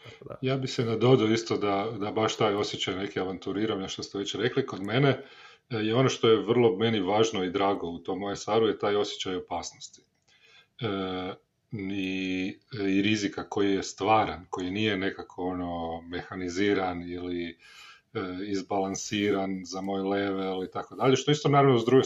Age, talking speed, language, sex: 40-59, 160 wpm, Croatian, male